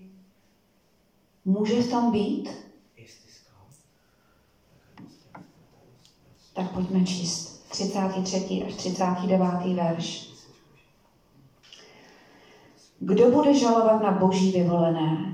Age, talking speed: 40-59, 65 wpm